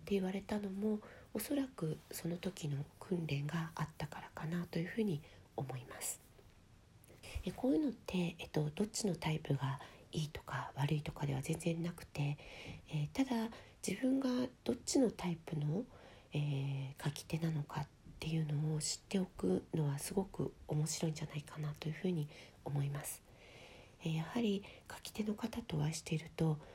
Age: 40-59